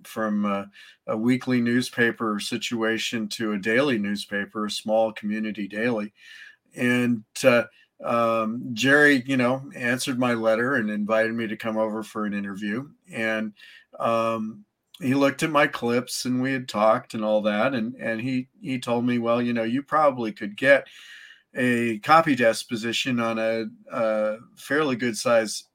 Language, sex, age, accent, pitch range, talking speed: English, male, 40-59, American, 110-130 Hz, 160 wpm